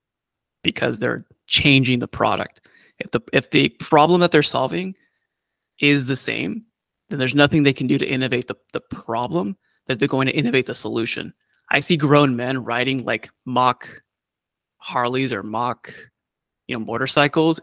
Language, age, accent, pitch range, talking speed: English, 20-39, American, 125-150 Hz, 160 wpm